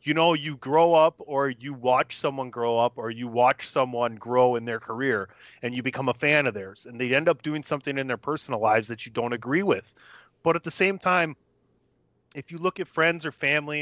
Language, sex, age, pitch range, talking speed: English, male, 30-49, 125-150 Hz, 230 wpm